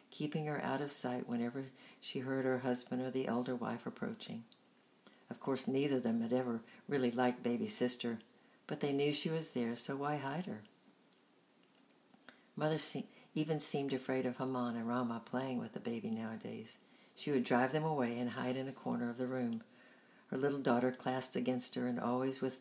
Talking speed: 190 wpm